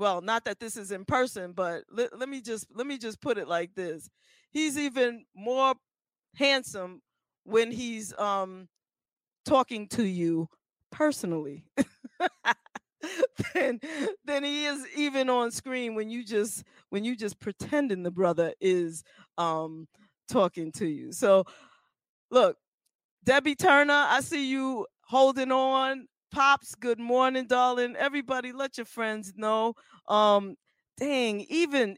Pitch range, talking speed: 190-265 Hz, 130 wpm